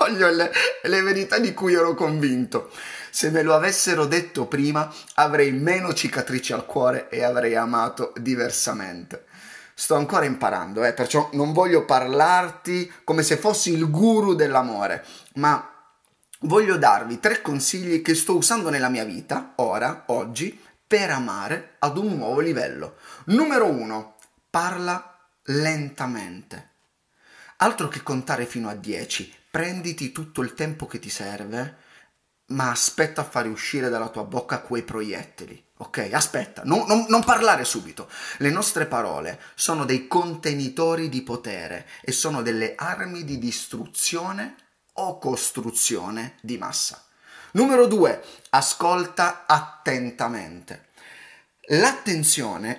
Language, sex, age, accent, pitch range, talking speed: Italian, male, 30-49, native, 125-175 Hz, 125 wpm